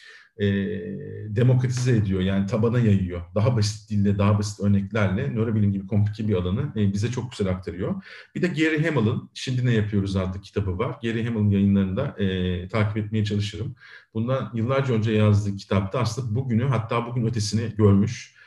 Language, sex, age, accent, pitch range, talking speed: Turkish, male, 40-59, native, 105-125 Hz, 165 wpm